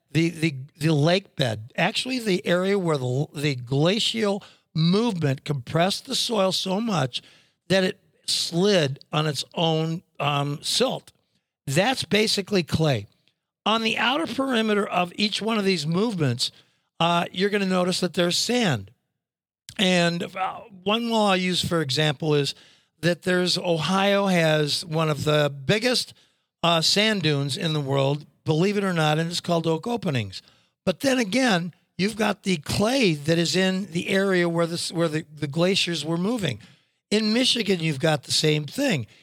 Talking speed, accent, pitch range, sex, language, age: 160 wpm, American, 155-200 Hz, male, English, 60-79